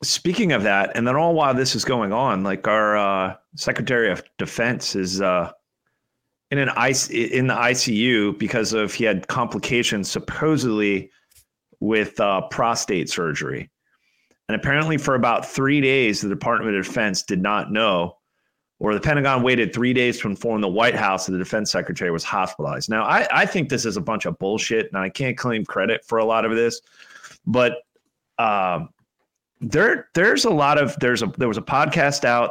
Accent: American